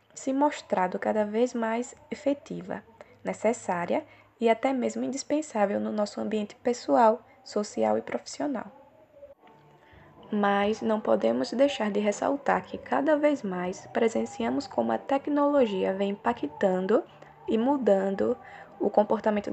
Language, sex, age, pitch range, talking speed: Portuguese, female, 10-29, 195-250 Hz, 115 wpm